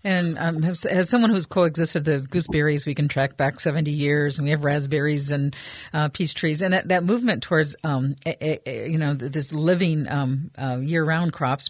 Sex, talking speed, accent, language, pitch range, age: female, 195 wpm, American, English, 145-175 Hz, 50-69